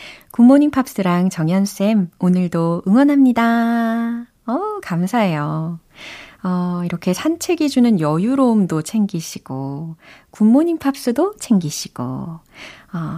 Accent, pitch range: native, 165-250 Hz